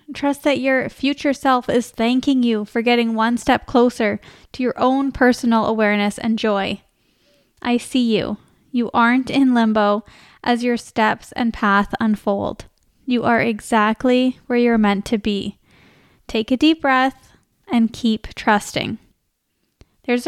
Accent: American